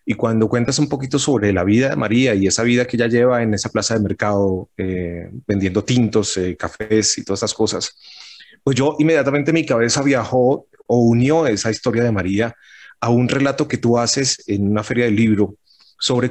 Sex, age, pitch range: male, 30-49, 105-125 Hz